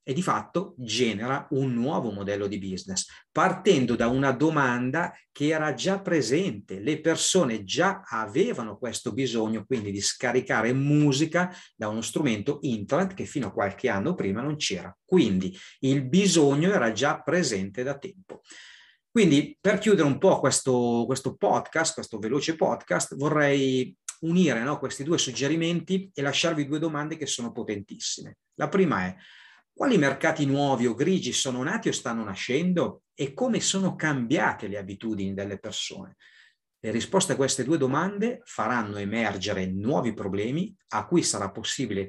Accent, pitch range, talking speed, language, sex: native, 110-160 Hz, 150 wpm, Italian, male